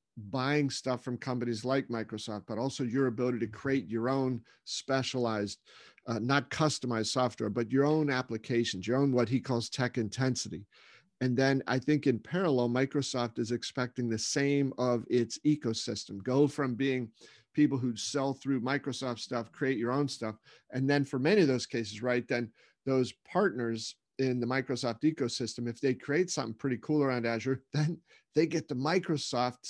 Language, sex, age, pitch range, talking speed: English, male, 50-69, 120-140 Hz, 170 wpm